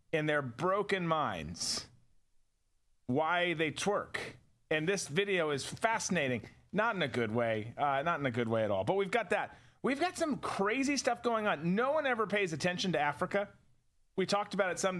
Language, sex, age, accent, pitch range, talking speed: English, male, 40-59, American, 145-195 Hz, 190 wpm